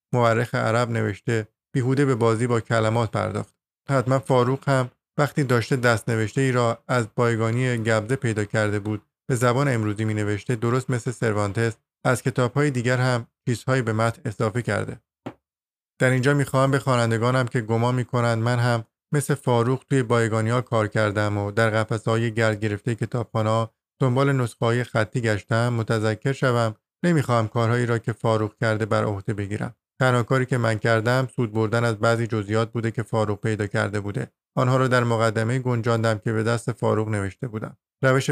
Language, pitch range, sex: Persian, 110-130 Hz, male